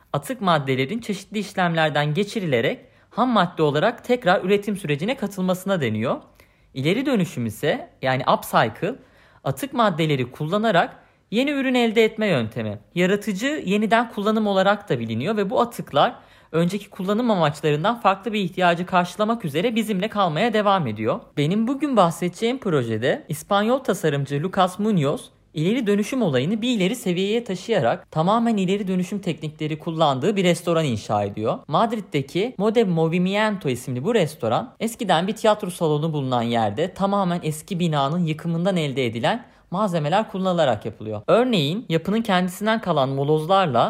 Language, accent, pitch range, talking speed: Turkish, native, 155-215 Hz, 135 wpm